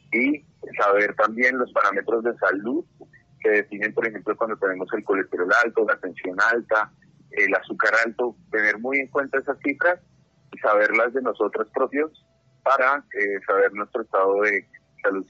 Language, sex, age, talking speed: Spanish, male, 30-49, 155 wpm